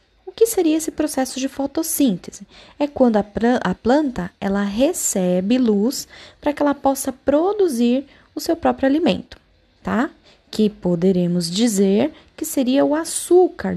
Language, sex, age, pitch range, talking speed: Portuguese, female, 10-29, 195-280 Hz, 135 wpm